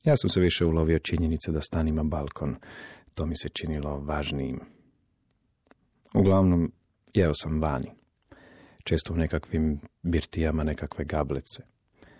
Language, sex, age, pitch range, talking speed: Croatian, male, 40-59, 75-85 Hz, 120 wpm